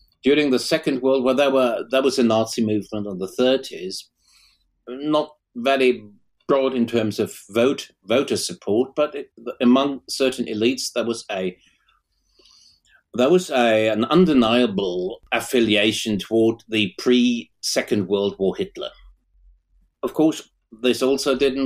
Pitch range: 105-130 Hz